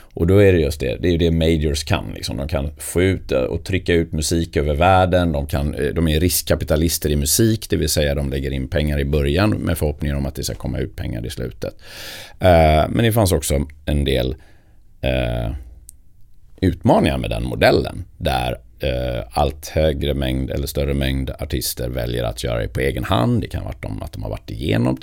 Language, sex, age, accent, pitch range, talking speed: Swedish, male, 30-49, native, 70-95 Hz, 210 wpm